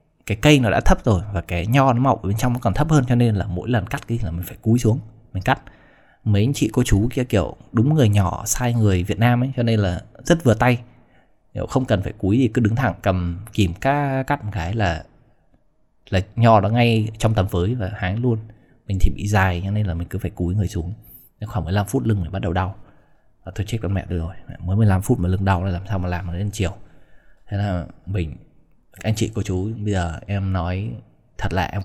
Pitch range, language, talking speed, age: 95-115 Hz, Vietnamese, 255 wpm, 20-39